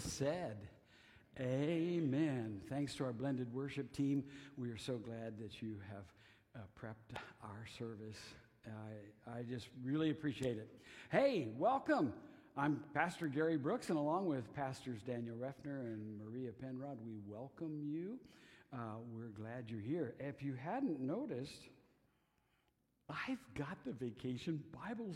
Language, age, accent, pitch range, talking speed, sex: English, 60-79, American, 115-145 Hz, 140 wpm, male